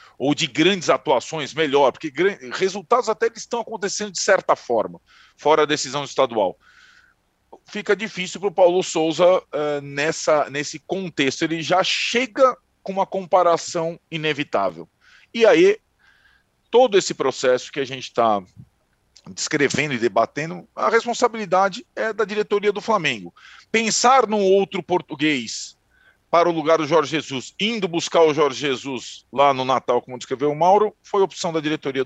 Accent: Brazilian